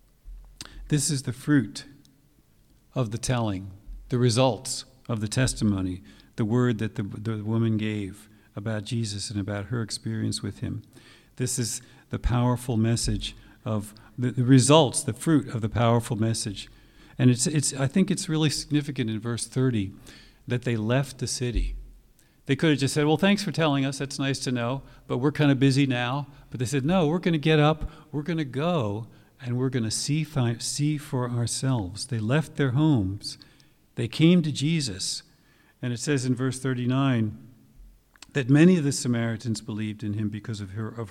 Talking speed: 180 wpm